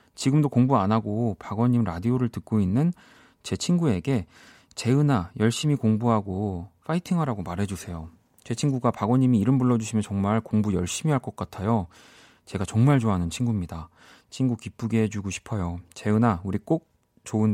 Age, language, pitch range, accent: 40-59, Korean, 95-135 Hz, native